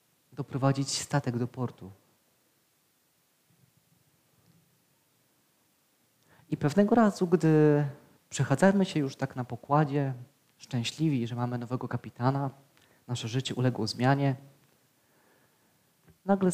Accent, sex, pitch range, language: native, male, 125-150 Hz, Polish